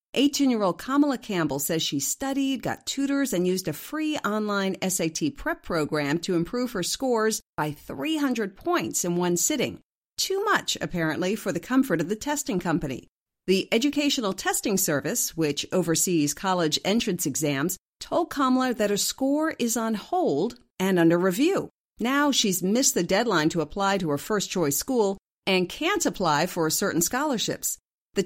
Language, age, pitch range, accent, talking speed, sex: English, 50-69, 170-260 Hz, American, 155 wpm, female